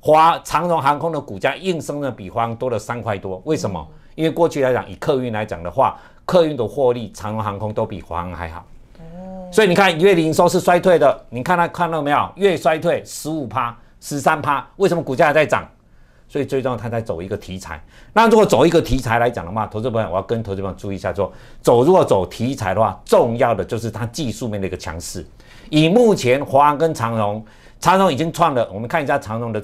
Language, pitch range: Chinese, 105-155 Hz